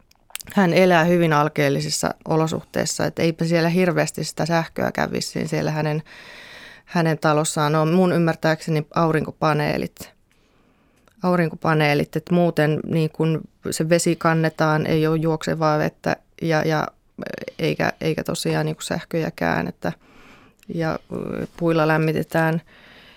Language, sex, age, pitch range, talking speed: Finnish, female, 30-49, 155-175 Hz, 110 wpm